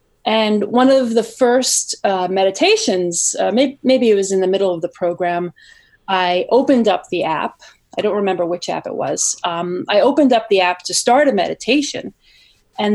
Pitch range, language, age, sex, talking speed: 180-215 Hz, English, 30-49, female, 190 wpm